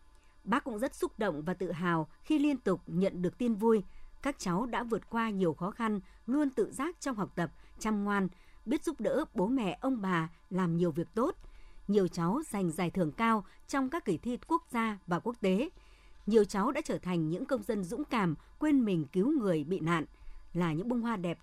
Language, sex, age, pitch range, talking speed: Vietnamese, male, 60-79, 175-255 Hz, 220 wpm